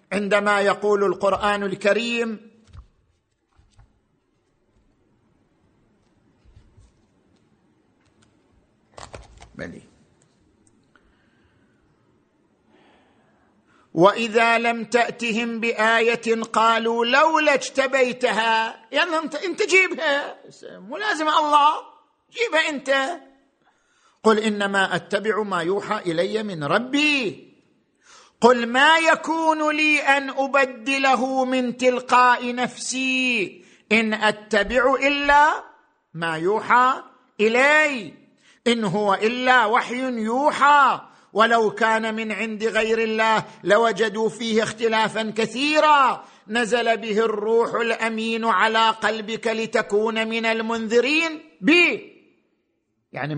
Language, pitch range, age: Arabic, 215-270 Hz, 50-69